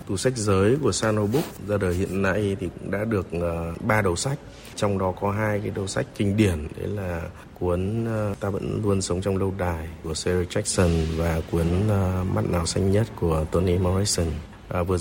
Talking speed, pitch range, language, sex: 215 wpm, 90-110 Hz, Vietnamese, male